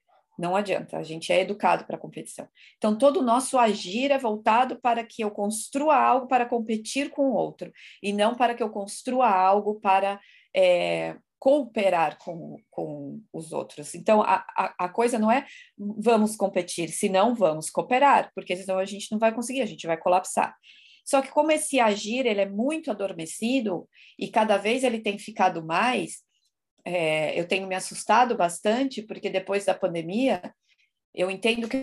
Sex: female